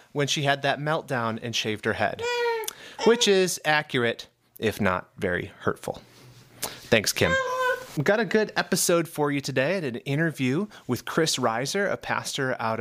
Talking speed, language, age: 170 wpm, English, 30-49